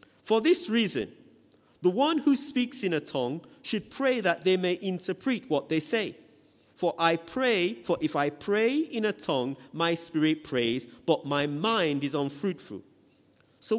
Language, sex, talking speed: English, male, 165 wpm